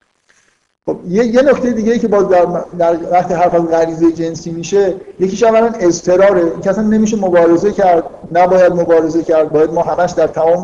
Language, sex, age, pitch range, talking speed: Persian, male, 50-69, 155-190 Hz, 165 wpm